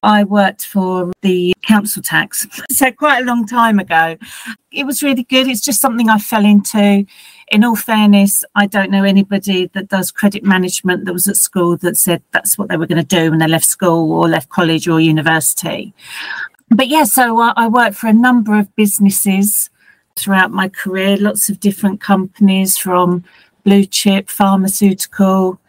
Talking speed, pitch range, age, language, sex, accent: 180 wpm, 190-215 Hz, 40-59, English, female, British